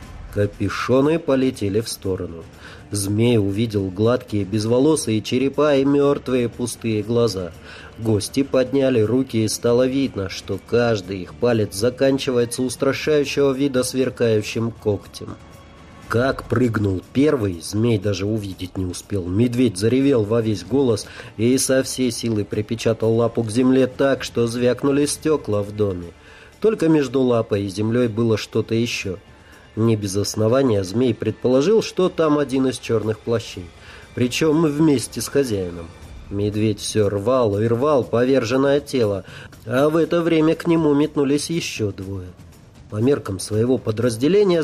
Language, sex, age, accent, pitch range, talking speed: Russian, male, 30-49, native, 105-130 Hz, 130 wpm